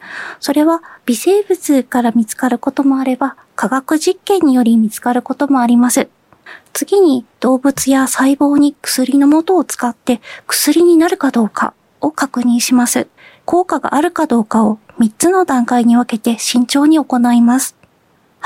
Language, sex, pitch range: Japanese, female, 235-300 Hz